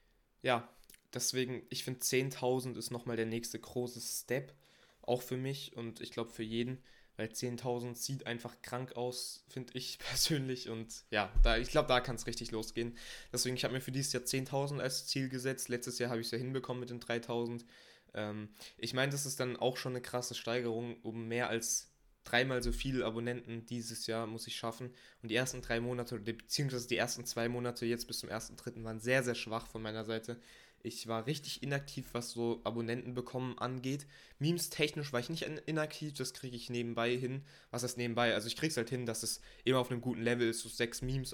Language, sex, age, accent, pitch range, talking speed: German, male, 20-39, German, 115-130 Hz, 210 wpm